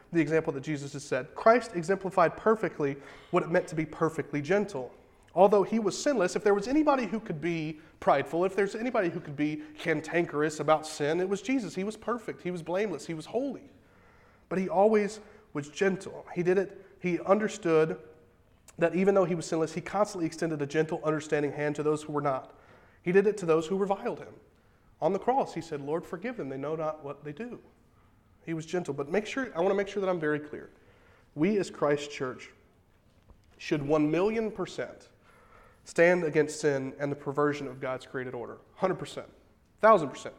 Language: English